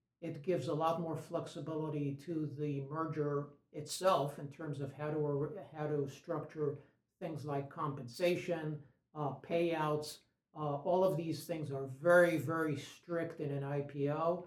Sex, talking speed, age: male, 145 wpm, 60-79